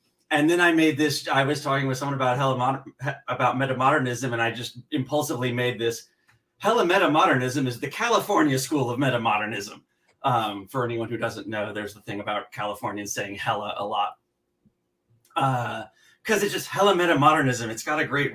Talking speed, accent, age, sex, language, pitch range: 175 wpm, American, 30-49, male, English, 110-140 Hz